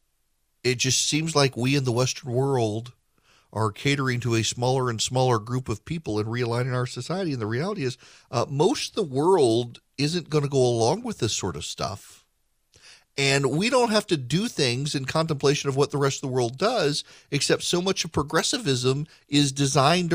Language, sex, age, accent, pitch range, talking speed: English, male, 40-59, American, 125-160 Hz, 195 wpm